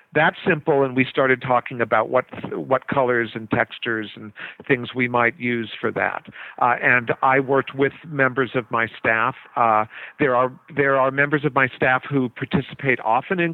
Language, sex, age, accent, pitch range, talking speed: English, male, 50-69, American, 120-150 Hz, 180 wpm